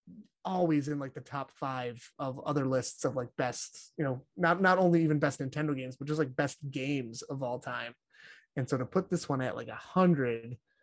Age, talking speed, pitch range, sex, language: 20-39, 215 wpm, 130-150 Hz, male, English